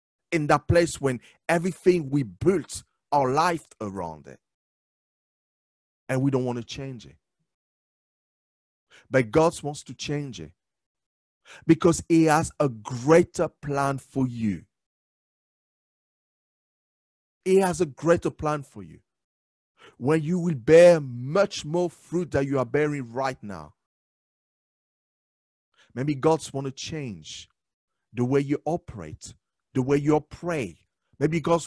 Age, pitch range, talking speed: 50-69, 110-165 Hz, 125 wpm